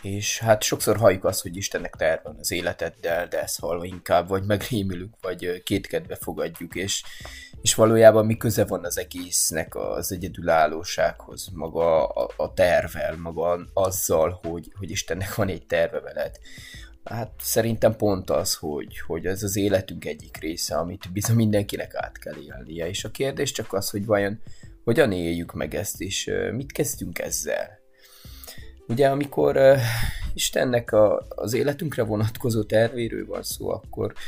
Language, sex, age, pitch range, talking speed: Hungarian, male, 20-39, 95-115 Hz, 150 wpm